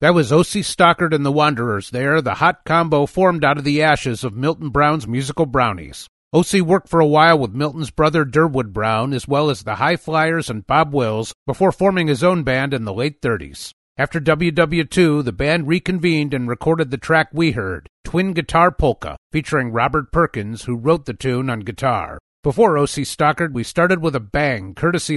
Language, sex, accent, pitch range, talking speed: English, male, American, 125-165 Hz, 195 wpm